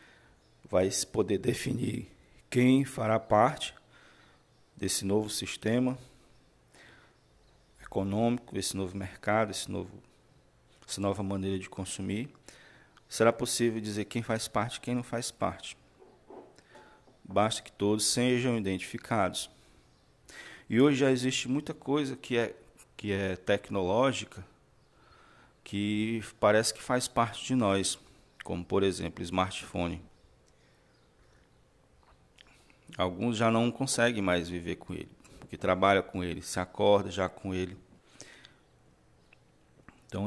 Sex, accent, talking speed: male, Brazilian, 115 wpm